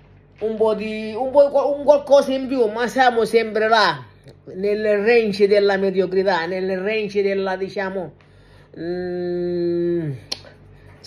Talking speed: 125 wpm